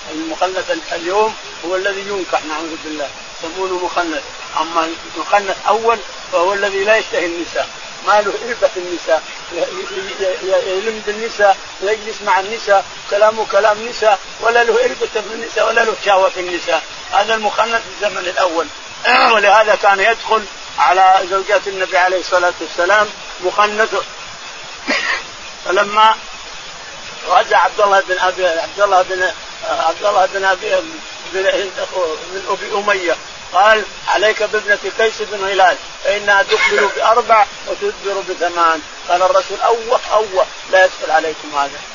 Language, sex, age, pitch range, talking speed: Arabic, male, 50-69, 180-210 Hz, 125 wpm